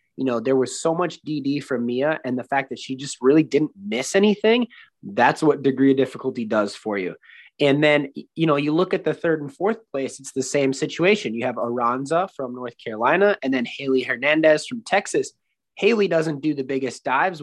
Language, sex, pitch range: English, male, 130-165 Hz